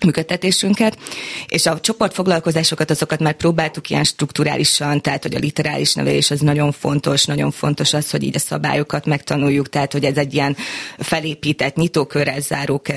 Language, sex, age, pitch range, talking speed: Hungarian, female, 20-39, 140-160 Hz, 150 wpm